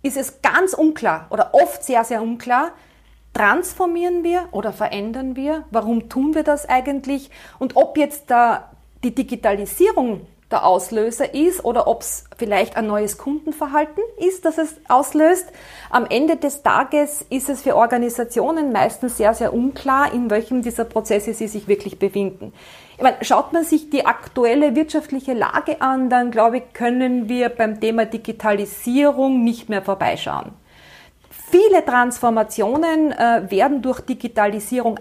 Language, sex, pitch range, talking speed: German, female, 225-295 Hz, 145 wpm